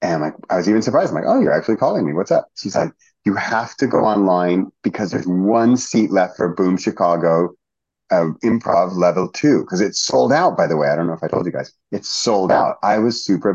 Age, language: 30-49, English